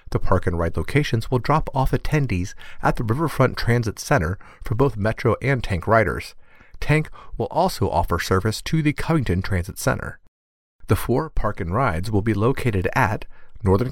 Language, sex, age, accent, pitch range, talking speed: English, male, 40-59, American, 90-140 Hz, 170 wpm